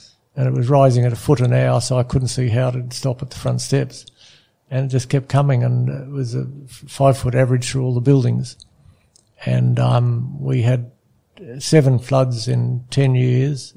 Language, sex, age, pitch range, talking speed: English, male, 60-79, 120-130 Hz, 190 wpm